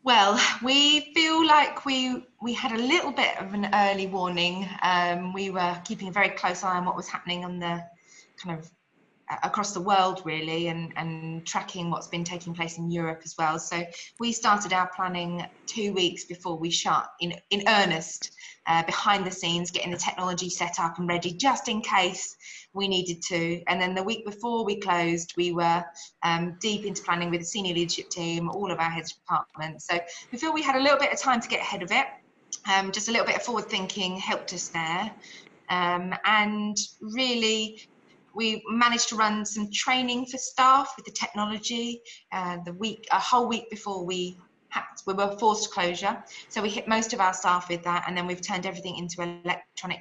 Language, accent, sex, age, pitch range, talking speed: English, British, female, 20-39, 175-220 Hz, 200 wpm